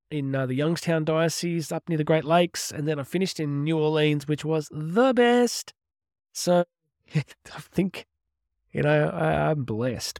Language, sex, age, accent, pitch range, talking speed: English, male, 20-39, Australian, 130-165 Hz, 170 wpm